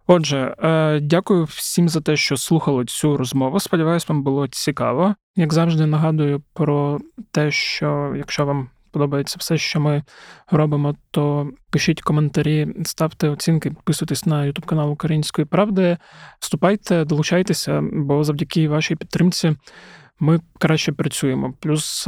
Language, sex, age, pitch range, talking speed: Ukrainian, male, 20-39, 145-165 Hz, 125 wpm